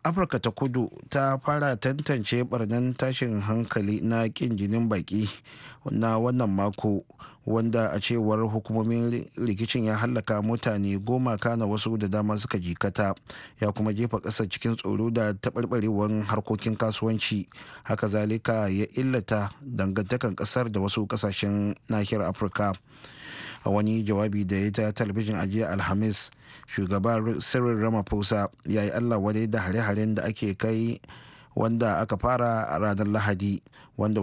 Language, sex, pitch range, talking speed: English, male, 105-120 Hz, 125 wpm